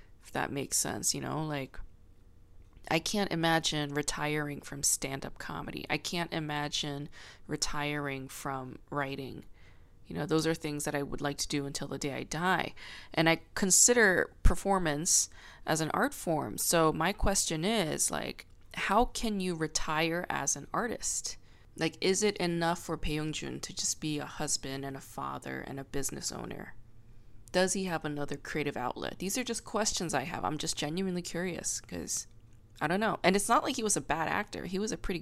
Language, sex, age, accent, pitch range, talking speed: English, female, 20-39, American, 140-180 Hz, 185 wpm